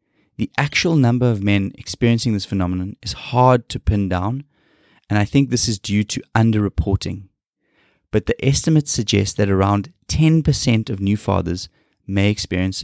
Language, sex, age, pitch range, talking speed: English, male, 20-39, 100-120 Hz, 155 wpm